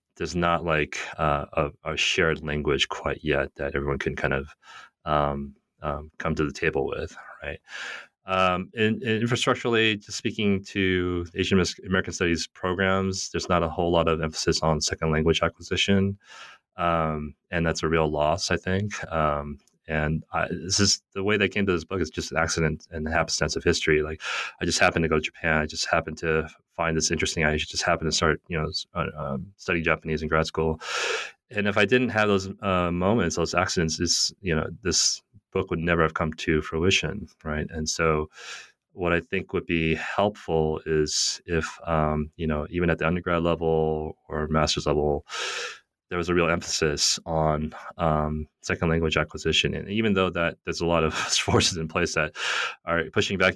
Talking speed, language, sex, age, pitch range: 190 wpm, English, male, 30-49, 80-95 Hz